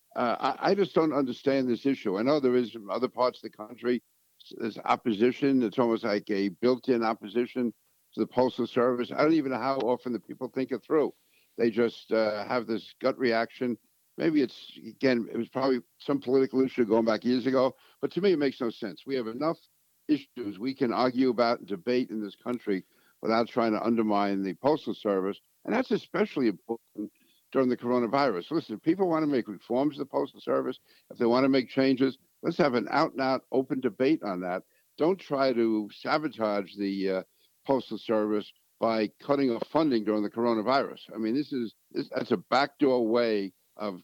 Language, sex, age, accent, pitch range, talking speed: English, male, 60-79, American, 110-135 Hz, 200 wpm